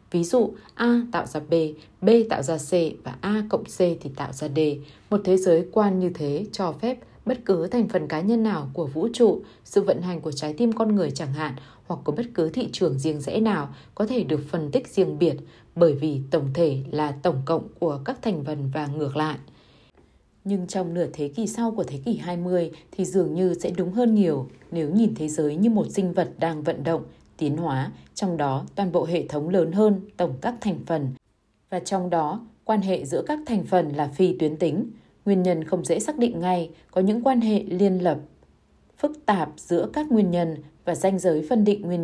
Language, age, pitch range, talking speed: Vietnamese, 20-39, 155-210 Hz, 225 wpm